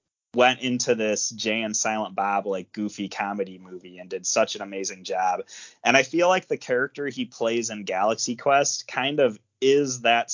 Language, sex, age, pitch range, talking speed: English, male, 20-39, 105-125 Hz, 185 wpm